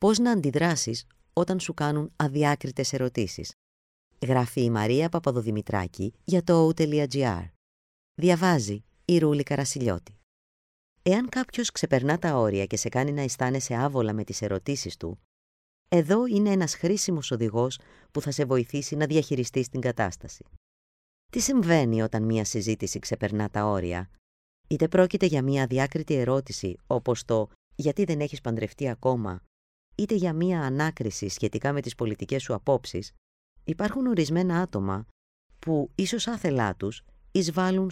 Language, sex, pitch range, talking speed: Greek, female, 100-160 Hz, 135 wpm